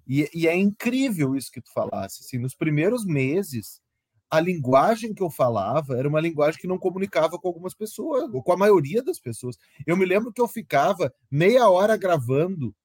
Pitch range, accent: 155-210 Hz, Brazilian